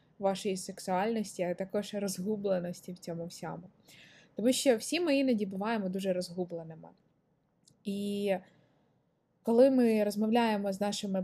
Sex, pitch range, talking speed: female, 180-215 Hz, 115 wpm